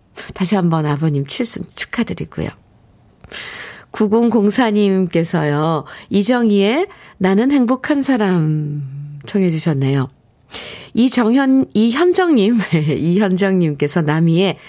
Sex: female